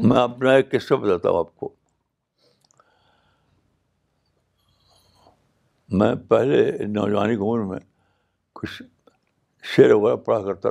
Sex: male